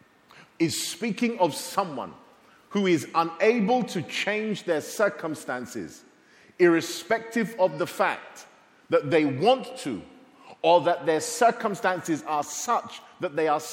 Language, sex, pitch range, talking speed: English, male, 165-220 Hz, 120 wpm